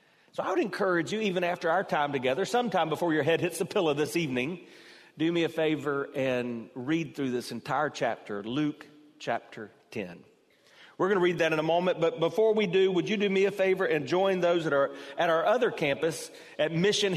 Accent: American